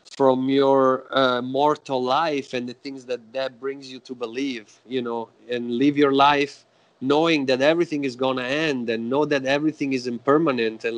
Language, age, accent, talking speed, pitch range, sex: English, 30-49, Italian, 185 wpm, 130-150 Hz, male